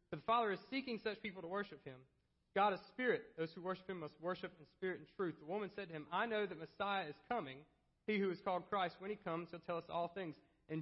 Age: 40-59